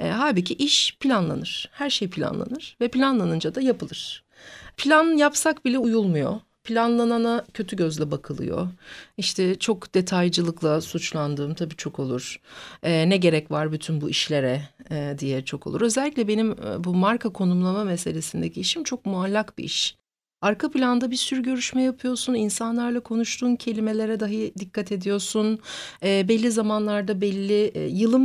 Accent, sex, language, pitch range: native, female, Turkish, 185-240 Hz